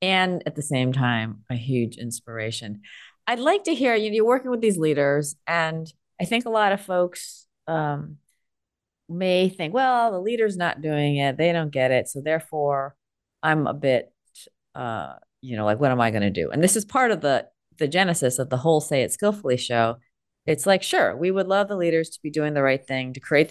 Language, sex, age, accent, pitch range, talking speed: English, female, 30-49, American, 135-200 Hz, 210 wpm